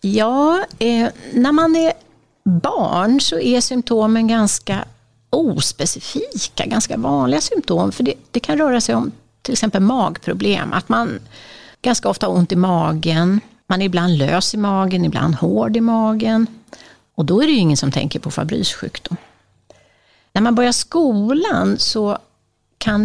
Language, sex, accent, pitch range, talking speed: Swedish, female, native, 165-230 Hz, 155 wpm